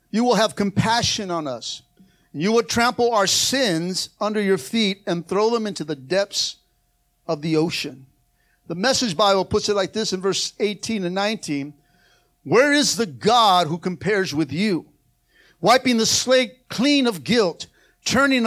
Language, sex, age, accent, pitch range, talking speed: English, male, 50-69, American, 145-215 Hz, 160 wpm